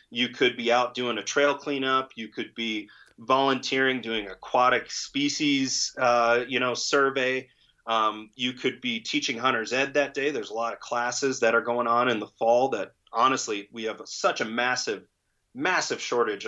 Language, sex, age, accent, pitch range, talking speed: English, male, 30-49, American, 120-145 Hz, 180 wpm